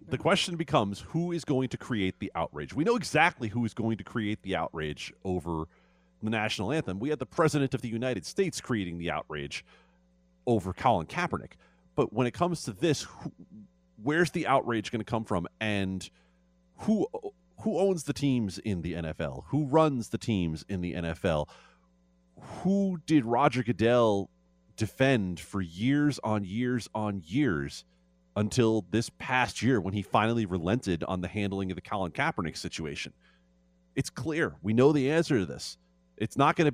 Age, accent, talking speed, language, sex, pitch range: 30-49, American, 175 wpm, English, male, 90-135 Hz